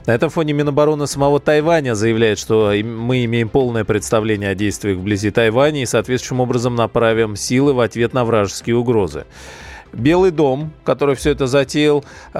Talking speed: 155 wpm